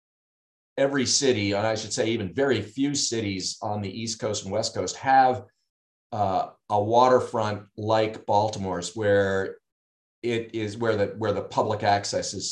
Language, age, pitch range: English, 40-59, 95-120 Hz